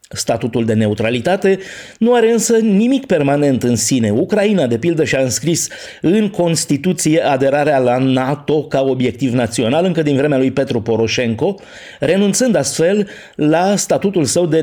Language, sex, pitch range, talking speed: Romanian, male, 135-180 Hz, 145 wpm